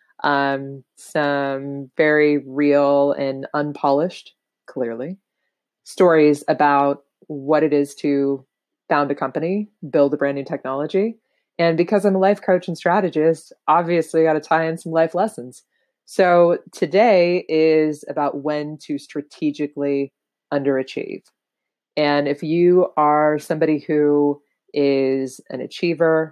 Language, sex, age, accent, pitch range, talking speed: English, female, 20-39, American, 140-170 Hz, 125 wpm